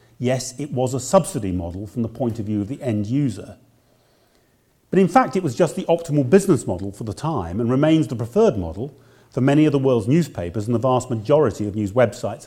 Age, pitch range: 40-59, 110-140 Hz